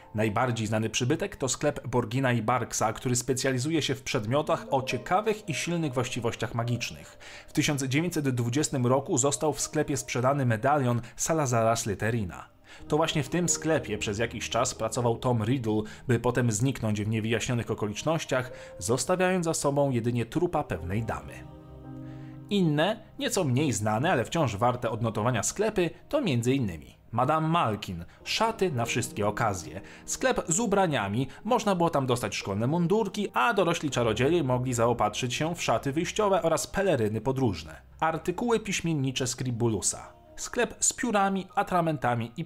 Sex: male